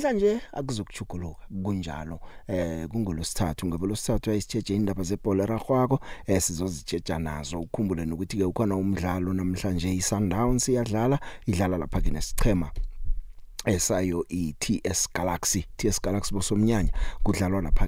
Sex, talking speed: male, 135 wpm